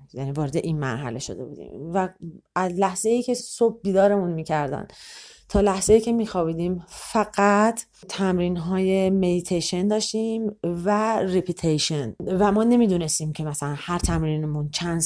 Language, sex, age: English, female, 30-49